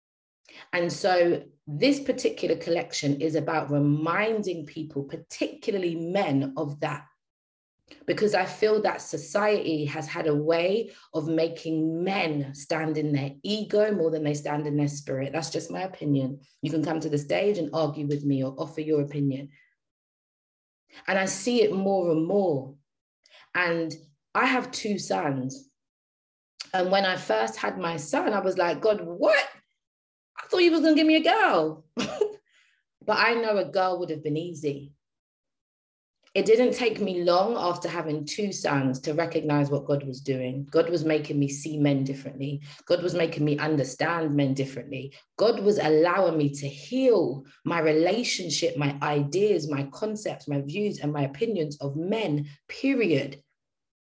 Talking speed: 160 wpm